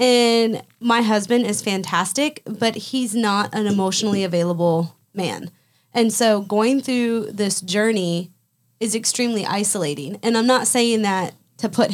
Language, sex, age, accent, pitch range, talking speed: English, female, 20-39, American, 195-235 Hz, 140 wpm